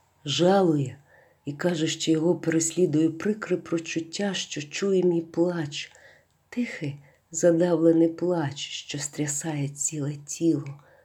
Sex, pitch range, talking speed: female, 145-180 Hz, 105 wpm